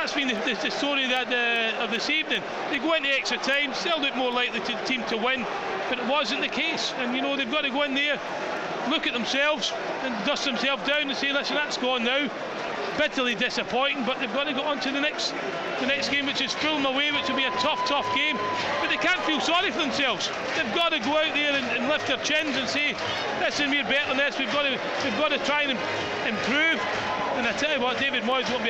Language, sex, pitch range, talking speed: English, male, 225-285 Hz, 245 wpm